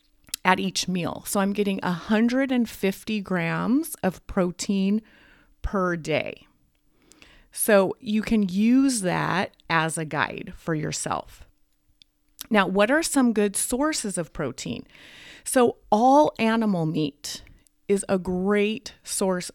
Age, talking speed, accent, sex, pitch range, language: 30-49, 115 wpm, American, female, 180-225 Hz, English